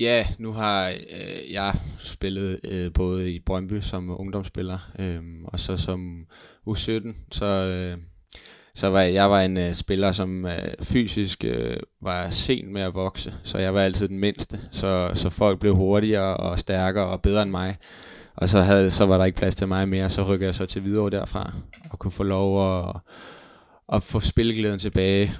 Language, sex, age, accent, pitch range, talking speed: Danish, male, 20-39, native, 90-100 Hz, 190 wpm